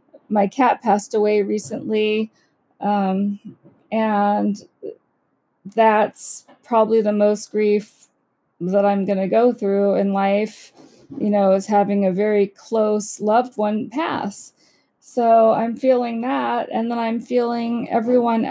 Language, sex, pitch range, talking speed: English, female, 205-235 Hz, 125 wpm